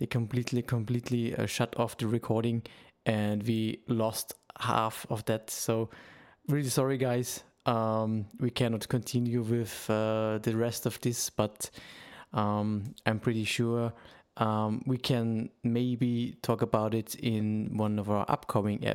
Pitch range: 105-125 Hz